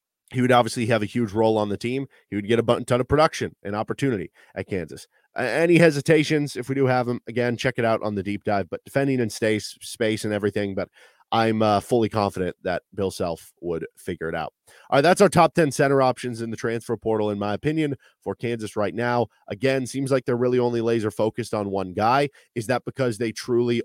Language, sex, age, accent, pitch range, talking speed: English, male, 30-49, American, 105-125 Hz, 225 wpm